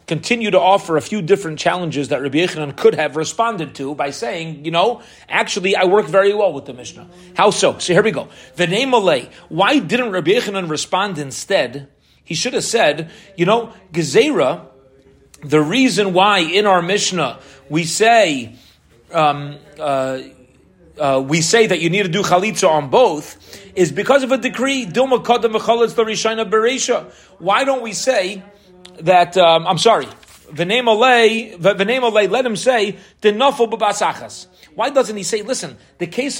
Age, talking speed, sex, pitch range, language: 30-49, 150 wpm, male, 160-220 Hz, English